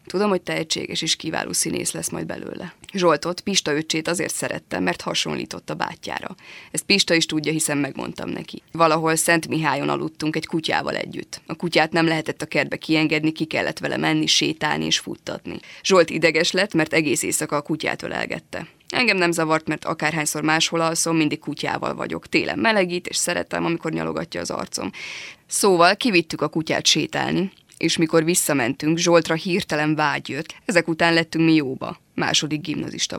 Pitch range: 155-170 Hz